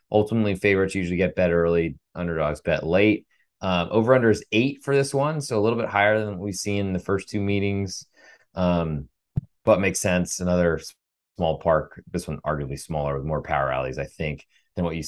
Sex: male